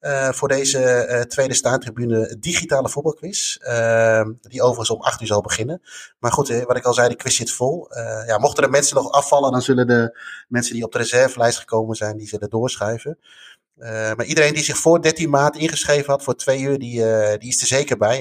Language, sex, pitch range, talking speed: Dutch, male, 115-150 Hz, 220 wpm